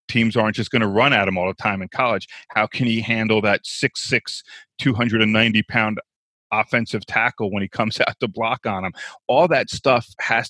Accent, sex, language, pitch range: American, male, English, 105-125 Hz